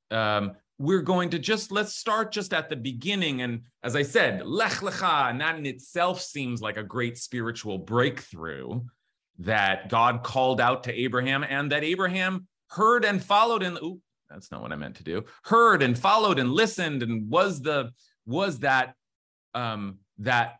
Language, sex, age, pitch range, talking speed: English, male, 30-49, 115-175 Hz, 170 wpm